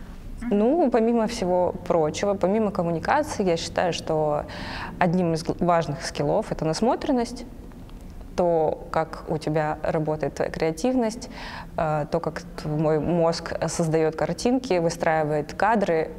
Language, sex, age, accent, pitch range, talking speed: Russian, female, 20-39, native, 165-220 Hz, 110 wpm